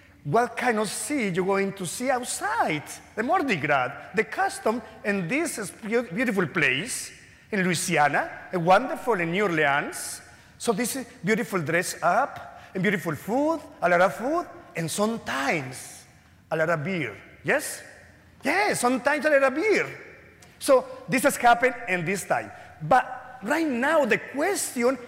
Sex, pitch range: male, 210-290 Hz